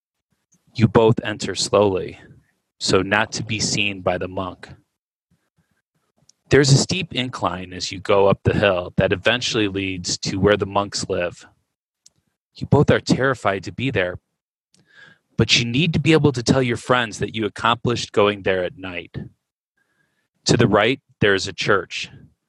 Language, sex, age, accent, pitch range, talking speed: English, male, 30-49, American, 105-135 Hz, 165 wpm